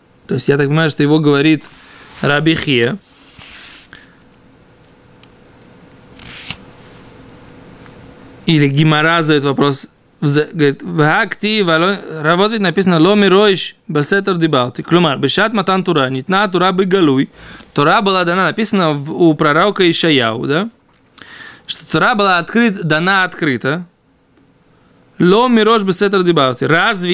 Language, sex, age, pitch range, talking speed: Russian, male, 20-39, 155-210 Hz, 100 wpm